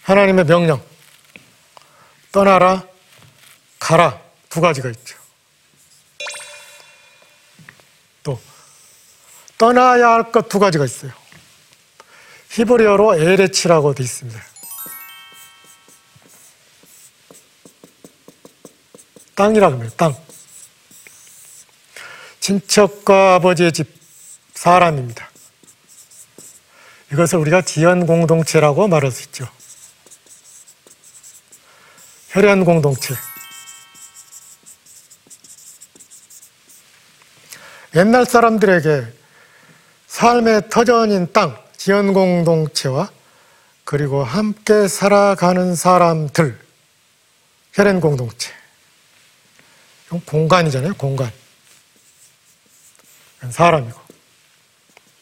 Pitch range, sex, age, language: 150-200 Hz, male, 40-59, Korean